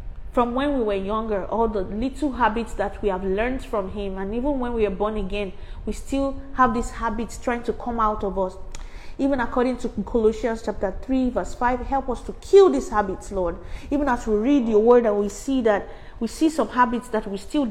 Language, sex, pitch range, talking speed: English, female, 200-245 Hz, 220 wpm